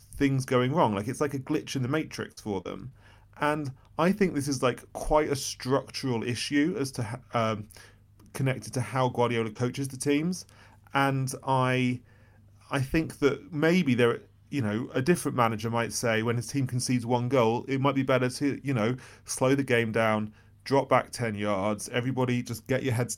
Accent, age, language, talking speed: British, 30-49, English, 190 wpm